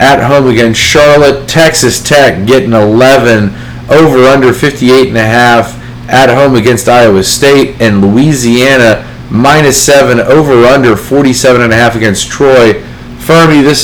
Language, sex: English, male